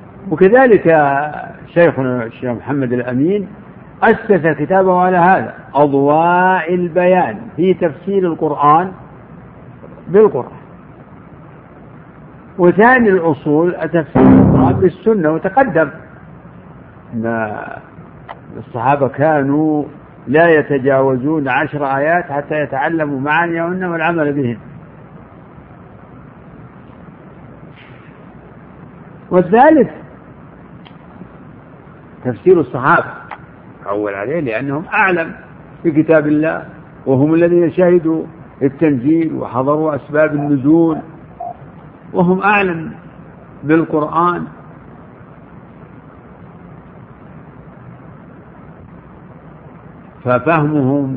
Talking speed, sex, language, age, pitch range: 65 wpm, male, Arabic, 60-79, 140-180 Hz